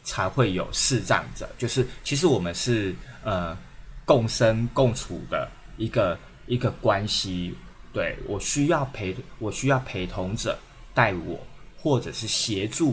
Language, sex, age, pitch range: Chinese, male, 20-39, 95-130 Hz